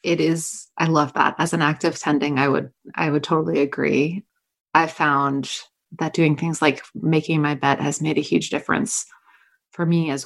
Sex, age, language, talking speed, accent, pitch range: female, 30-49, English, 195 wpm, American, 155-180 Hz